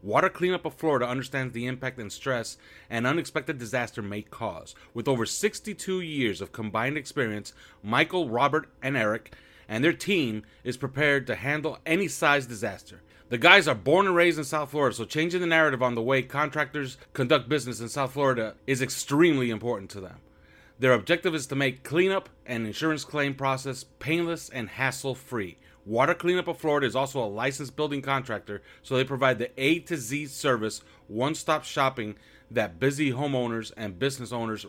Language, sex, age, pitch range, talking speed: English, male, 30-49, 115-150 Hz, 175 wpm